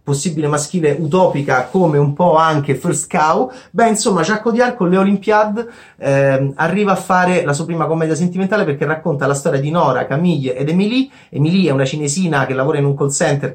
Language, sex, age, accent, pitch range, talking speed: Italian, male, 30-49, native, 140-185 Hz, 195 wpm